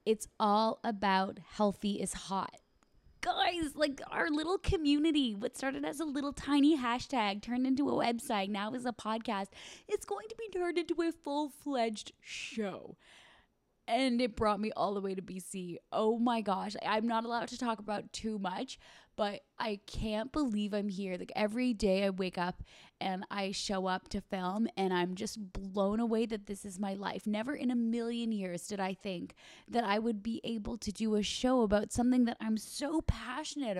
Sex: female